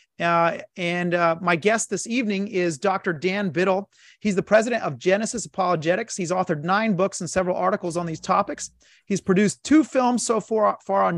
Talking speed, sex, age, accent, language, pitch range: 190 wpm, male, 30-49, American, English, 170-205 Hz